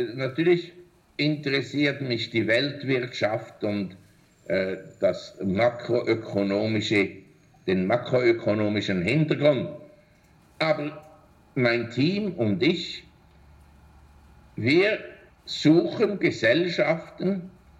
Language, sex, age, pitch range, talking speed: German, male, 60-79, 115-160 Hz, 65 wpm